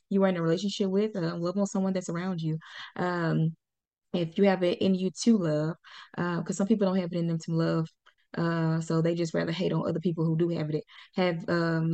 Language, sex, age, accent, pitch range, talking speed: English, female, 20-39, American, 175-215 Hz, 240 wpm